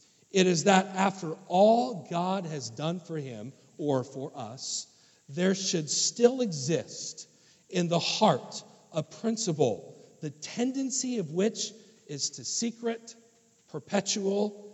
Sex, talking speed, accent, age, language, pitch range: male, 120 wpm, American, 50-69, English, 160-225 Hz